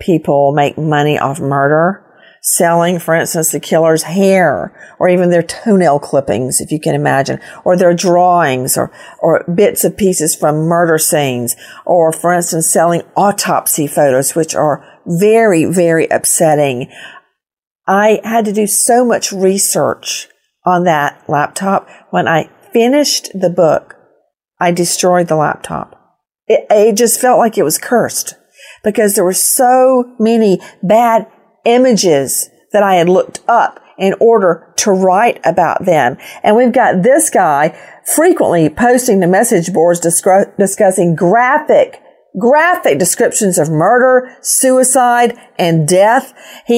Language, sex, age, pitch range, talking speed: English, female, 50-69, 170-245 Hz, 135 wpm